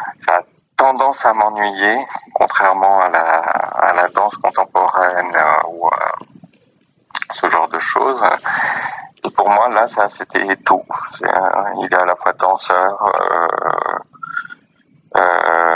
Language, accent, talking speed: French, French, 125 wpm